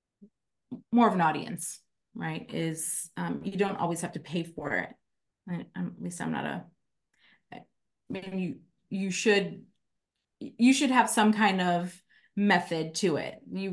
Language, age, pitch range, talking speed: English, 30-49, 160-185 Hz, 165 wpm